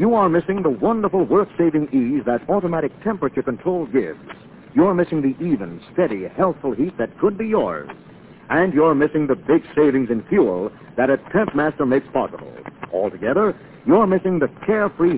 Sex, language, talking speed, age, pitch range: male, English, 165 wpm, 60-79, 145-200 Hz